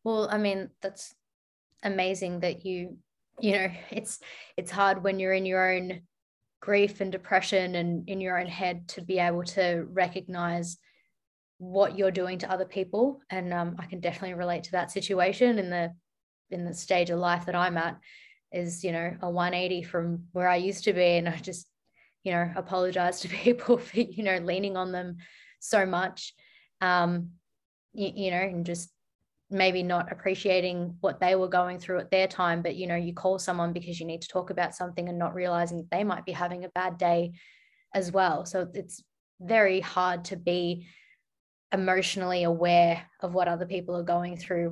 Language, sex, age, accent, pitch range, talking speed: English, female, 20-39, Australian, 175-190 Hz, 185 wpm